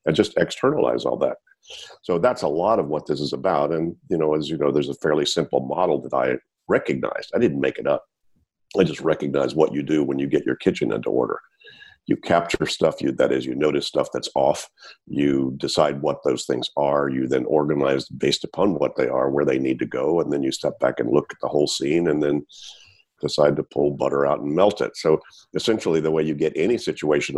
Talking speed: 230 wpm